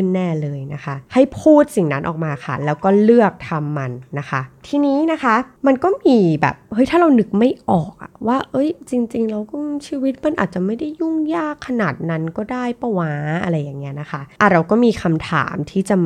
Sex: female